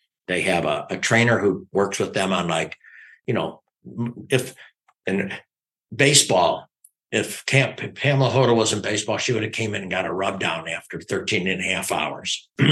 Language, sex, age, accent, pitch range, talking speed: English, male, 60-79, American, 100-140 Hz, 180 wpm